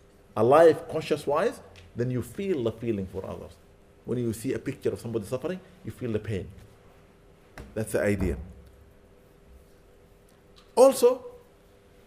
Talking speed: 130 wpm